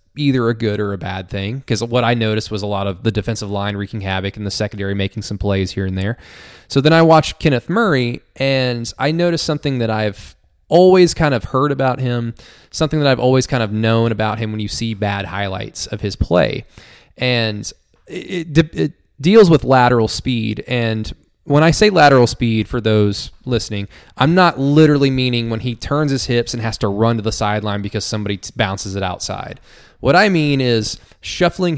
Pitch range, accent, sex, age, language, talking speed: 105-130 Hz, American, male, 20-39, English, 205 wpm